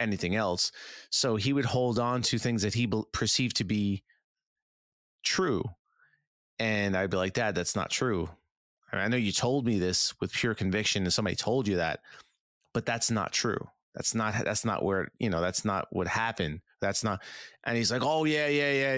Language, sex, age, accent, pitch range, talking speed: English, male, 30-49, American, 100-125 Hz, 200 wpm